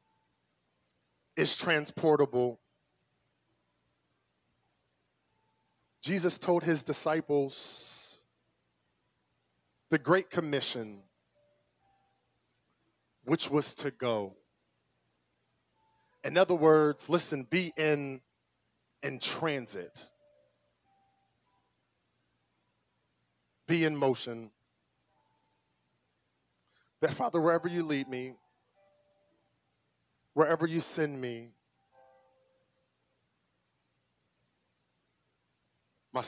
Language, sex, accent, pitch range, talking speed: English, male, American, 120-160 Hz, 60 wpm